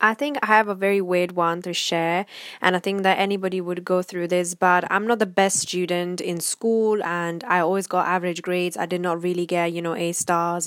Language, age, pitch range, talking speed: English, 10-29, 175-190 Hz, 235 wpm